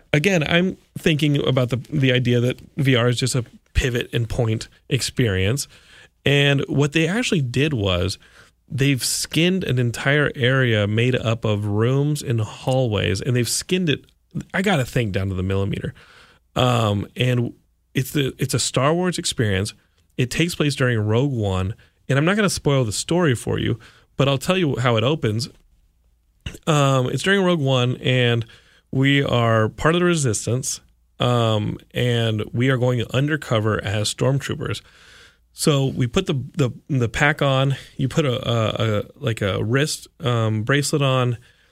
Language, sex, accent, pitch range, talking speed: English, male, American, 110-140 Hz, 165 wpm